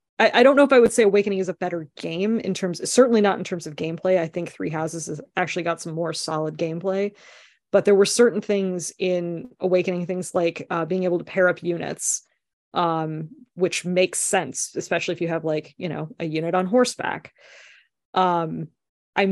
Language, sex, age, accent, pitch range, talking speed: English, female, 20-39, American, 165-200 Hz, 200 wpm